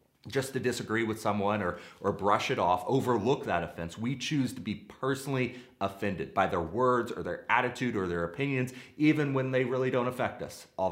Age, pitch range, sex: 30-49, 105-135 Hz, male